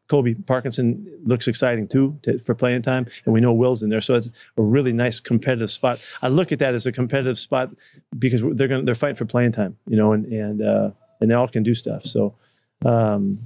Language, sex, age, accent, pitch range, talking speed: English, male, 40-59, American, 110-130 Hz, 225 wpm